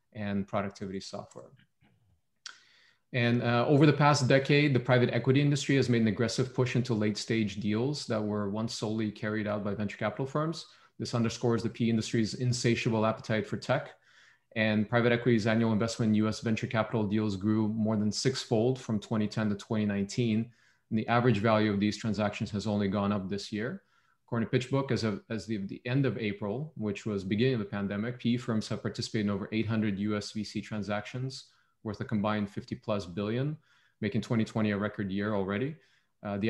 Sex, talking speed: male, 185 wpm